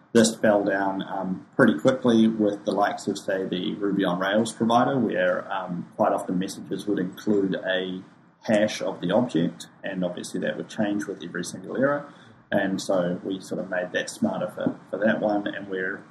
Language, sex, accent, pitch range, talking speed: English, male, Australian, 90-110 Hz, 190 wpm